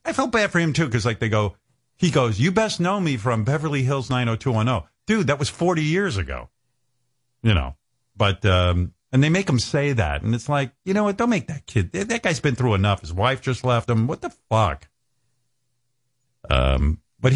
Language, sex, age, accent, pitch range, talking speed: English, male, 50-69, American, 100-135 Hz, 210 wpm